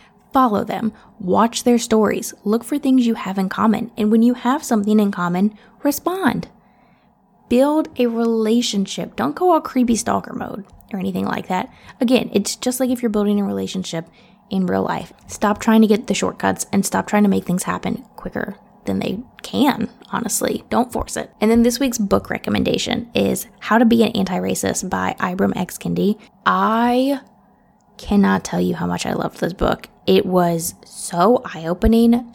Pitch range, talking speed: 195-235 Hz, 180 wpm